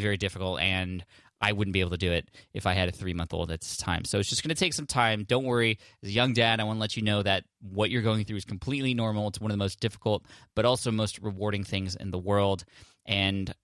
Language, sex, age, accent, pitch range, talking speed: English, male, 20-39, American, 95-105 Hz, 275 wpm